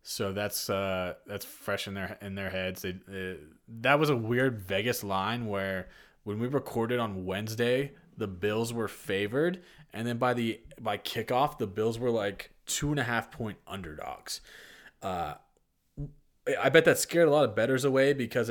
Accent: American